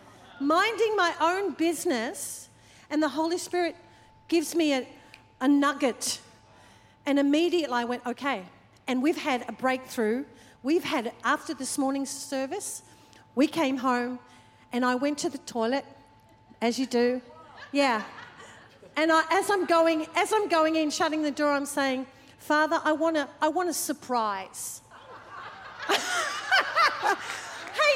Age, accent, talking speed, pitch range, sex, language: 40-59, Australian, 135 wpm, 275-360 Hz, female, English